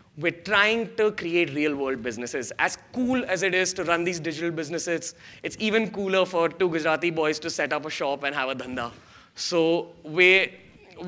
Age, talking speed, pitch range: 20-39, 185 wpm, 150-195 Hz